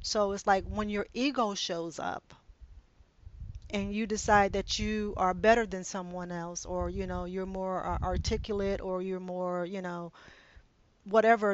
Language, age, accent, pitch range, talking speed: English, 40-59, American, 180-205 Hz, 155 wpm